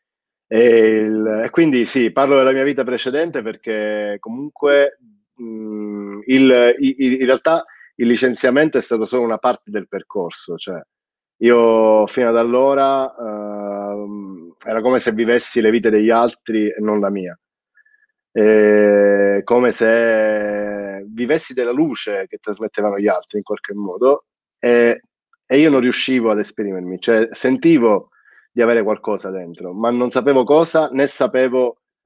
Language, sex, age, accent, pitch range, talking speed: Italian, male, 30-49, native, 105-135 Hz, 140 wpm